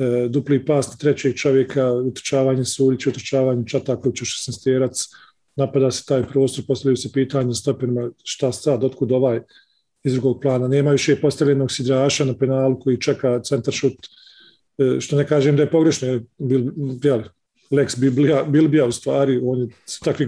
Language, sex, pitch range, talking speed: English, male, 130-145 Hz, 160 wpm